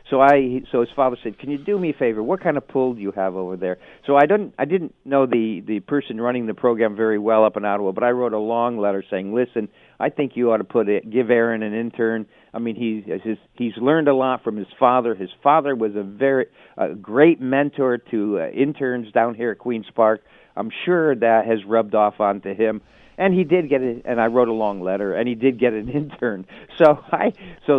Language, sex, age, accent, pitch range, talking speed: English, male, 50-69, American, 110-140 Hz, 240 wpm